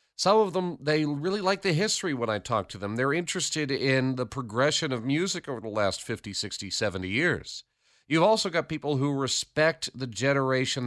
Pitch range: 105-140 Hz